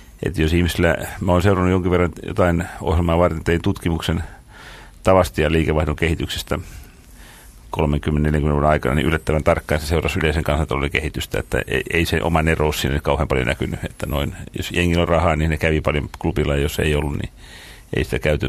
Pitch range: 75-90 Hz